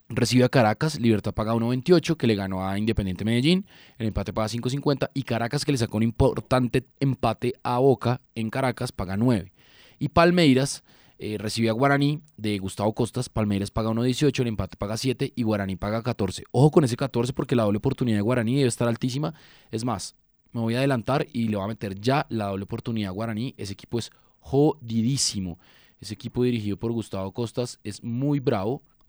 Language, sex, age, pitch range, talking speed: Spanish, male, 20-39, 105-130 Hz, 190 wpm